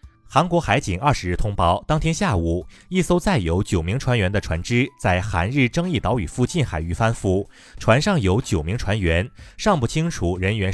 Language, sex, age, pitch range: Chinese, male, 30-49, 95-140 Hz